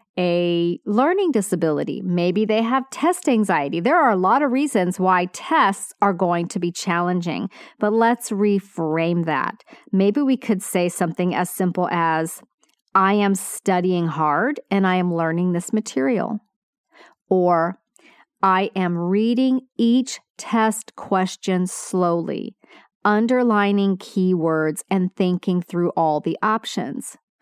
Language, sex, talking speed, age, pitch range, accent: English, female, 130 wpm, 40-59, 175-230 Hz, American